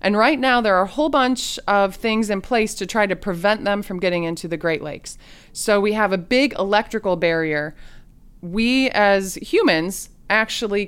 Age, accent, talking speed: 20-39, American, 190 wpm